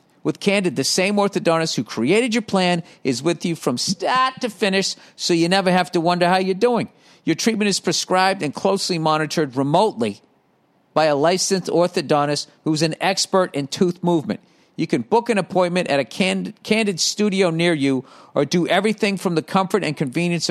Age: 50-69